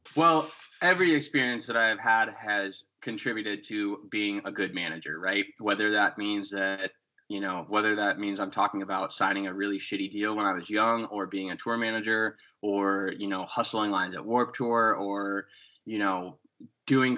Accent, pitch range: American, 100-130 Hz